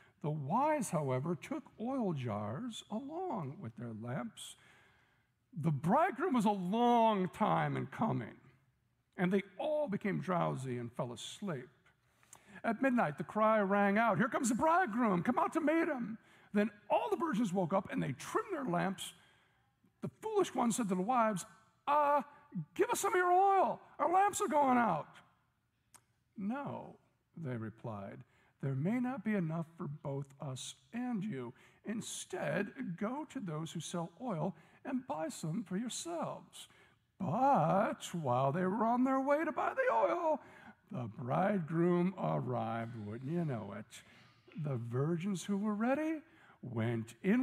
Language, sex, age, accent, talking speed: English, male, 60-79, American, 155 wpm